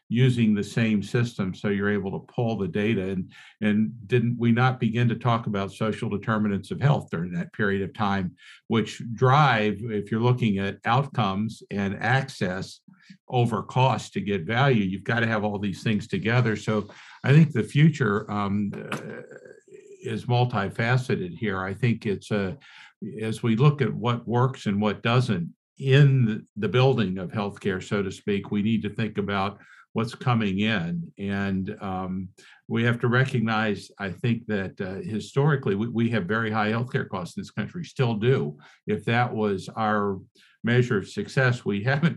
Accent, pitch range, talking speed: American, 105-125 Hz, 170 wpm